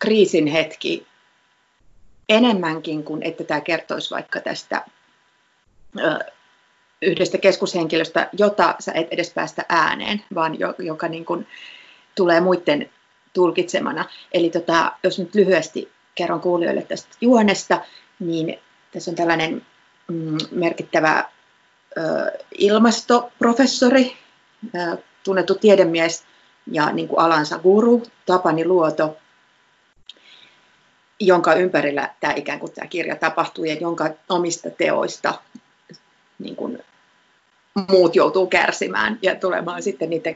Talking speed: 105 wpm